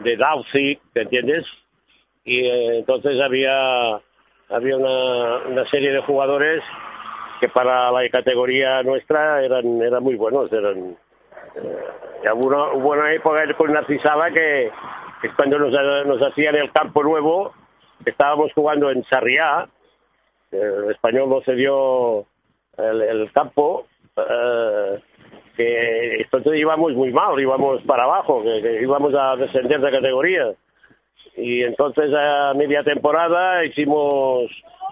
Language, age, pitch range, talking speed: Spanish, 50-69, 130-170 Hz, 125 wpm